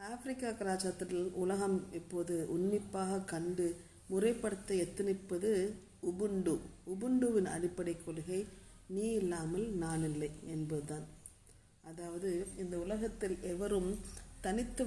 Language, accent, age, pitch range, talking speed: Tamil, native, 50-69, 160-195 Hz, 90 wpm